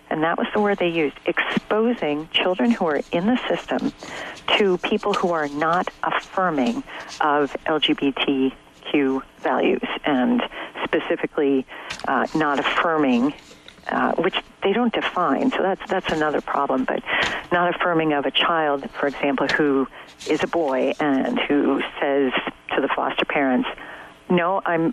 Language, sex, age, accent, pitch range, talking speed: English, female, 50-69, American, 150-215 Hz, 140 wpm